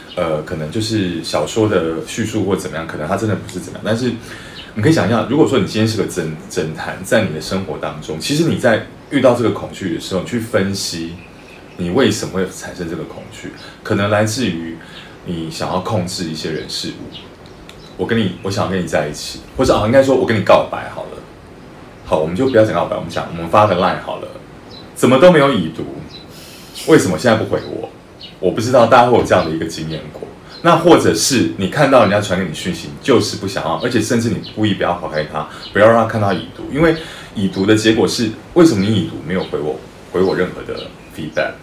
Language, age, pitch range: Chinese, 30-49, 85-110 Hz